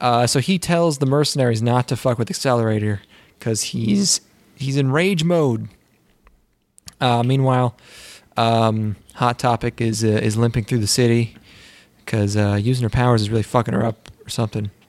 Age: 20-39